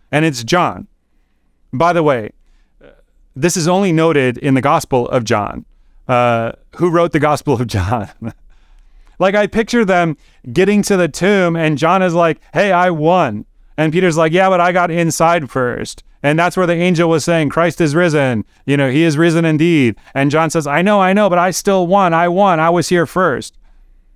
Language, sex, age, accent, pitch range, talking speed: English, male, 30-49, American, 115-170 Hz, 195 wpm